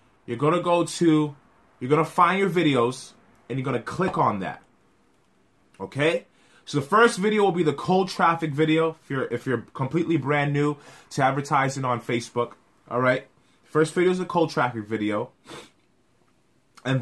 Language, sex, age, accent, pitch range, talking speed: English, male, 20-39, American, 130-170 Hz, 175 wpm